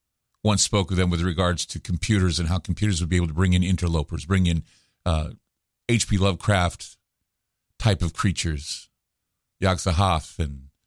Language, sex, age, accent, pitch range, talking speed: English, male, 50-69, American, 85-105 Hz, 155 wpm